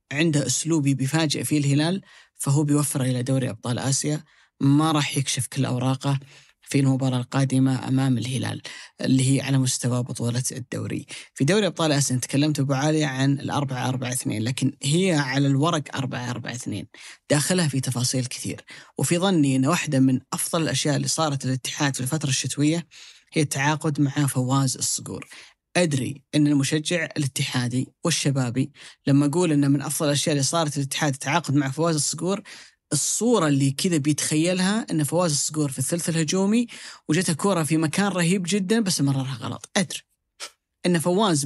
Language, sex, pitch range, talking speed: Arabic, female, 135-170 Hz, 155 wpm